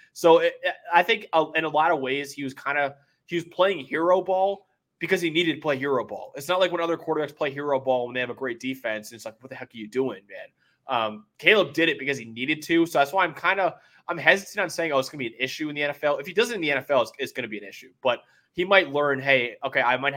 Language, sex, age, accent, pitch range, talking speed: English, male, 20-39, American, 120-150 Hz, 305 wpm